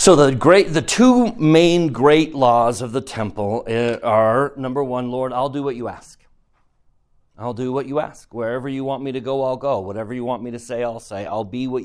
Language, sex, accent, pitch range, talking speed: English, male, American, 120-150 Hz, 225 wpm